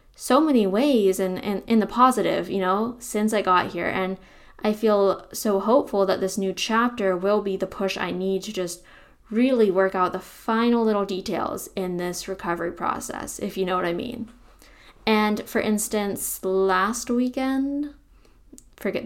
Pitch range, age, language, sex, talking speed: 195-250 Hz, 10-29, English, female, 170 wpm